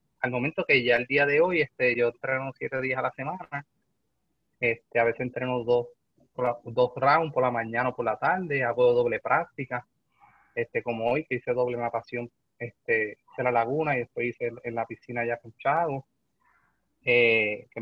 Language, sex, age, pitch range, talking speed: Spanish, male, 30-49, 120-155 Hz, 190 wpm